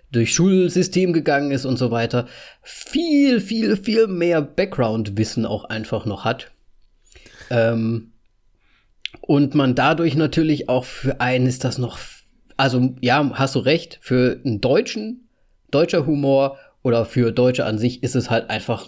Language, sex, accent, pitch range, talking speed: German, male, German, 120-165 Hz, 145 wpm